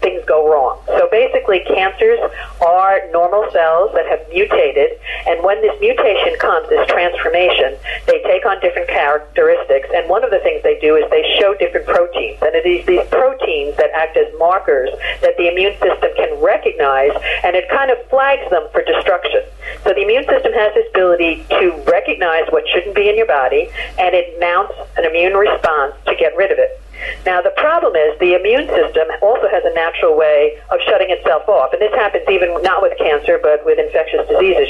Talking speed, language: 195 wpm, English